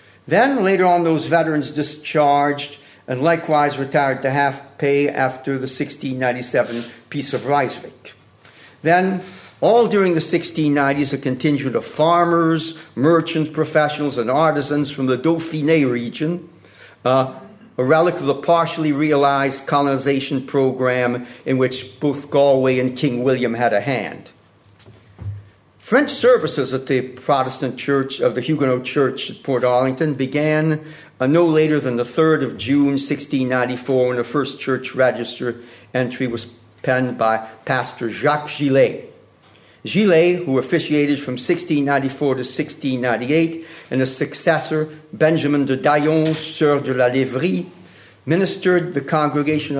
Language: English